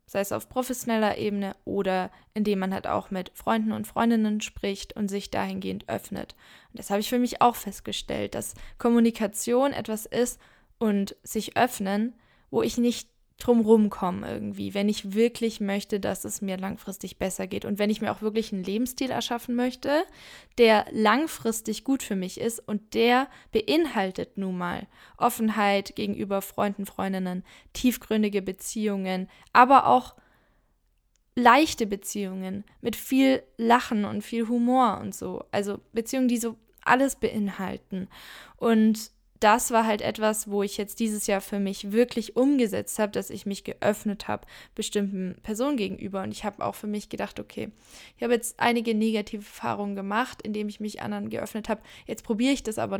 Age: 10-29